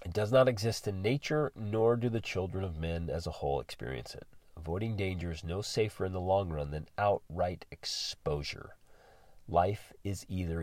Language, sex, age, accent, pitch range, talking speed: English, male, 30-49, American, 85-110 Hz, 180 wpm